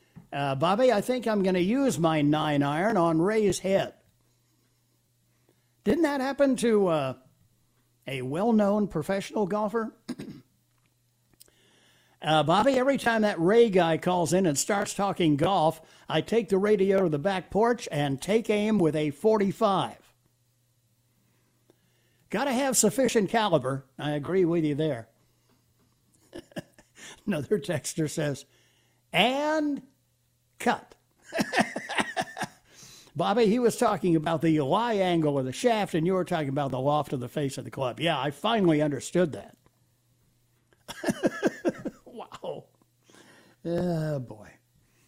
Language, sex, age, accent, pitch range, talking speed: English, male, 60-79, American, 125-200 Hz, 130 wpm